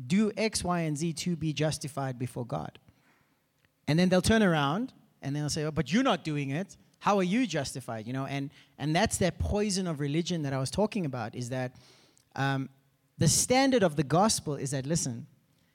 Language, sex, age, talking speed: English, male, 30-49, 200 wpm